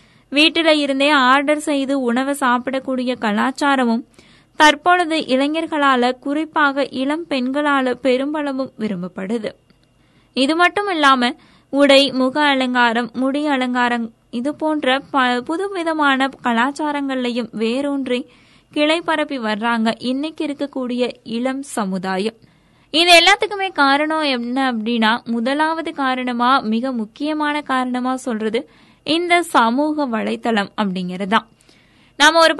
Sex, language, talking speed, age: female, Tamil, 65 wpm, 20-39